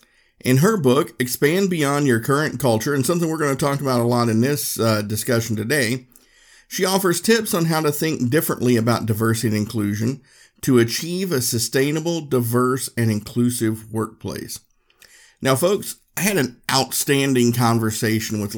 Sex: male